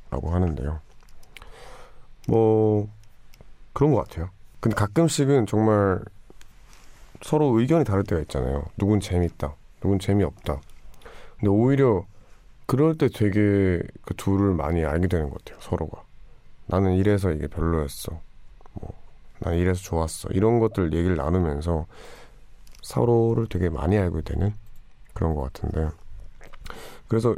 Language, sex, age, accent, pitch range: Korean, male, 40-59, native, 80-105 Hz